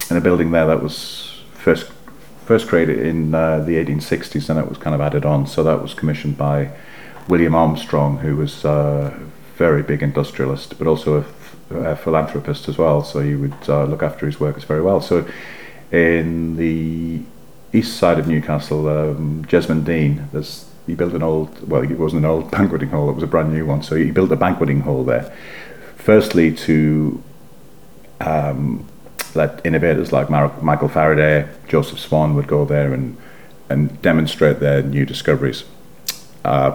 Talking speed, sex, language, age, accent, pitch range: 170 wpm, male, English, 40-59, British, 70-80 Hz